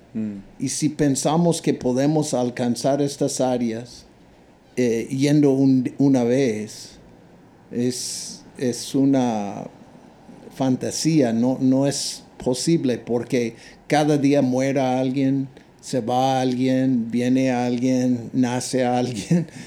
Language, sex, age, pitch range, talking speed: Spanish, male, 50-69, 120-140 Hz, 100 wpm